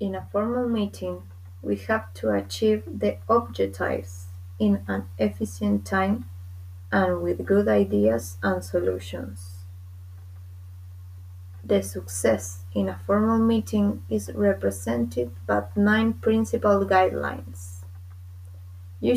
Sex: female